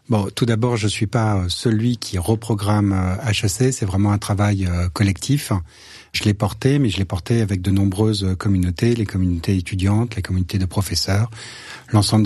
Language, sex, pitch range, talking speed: French, male, 95-115 Hz, 170 wpm